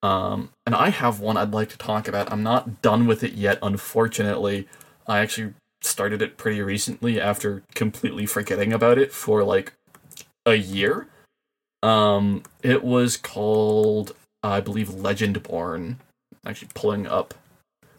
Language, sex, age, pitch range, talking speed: English, male, 20-39, 105-120 Hz, 145 wpm